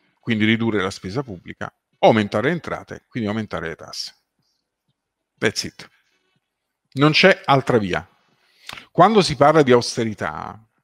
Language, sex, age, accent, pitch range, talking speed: Italian, male, 50-69, native, 105-135 Hz, 125 wpm